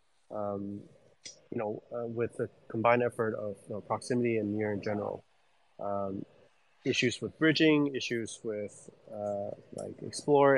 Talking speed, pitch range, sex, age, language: 130 wpm, 105-125 Hz, male, 30-49, English